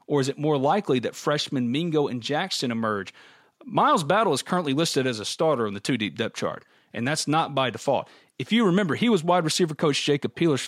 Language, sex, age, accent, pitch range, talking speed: English, male, 40-59, American, 135-170 Hz, 220 wpm